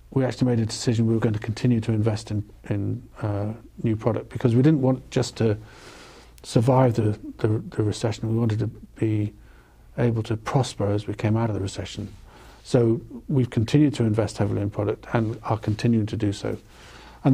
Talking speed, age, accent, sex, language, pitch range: 195 wpm, 50-69, British, male, English, 105-120 Hz